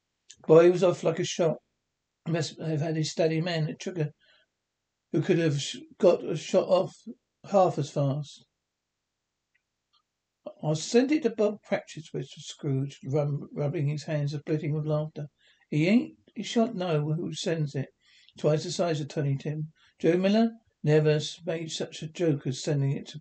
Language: English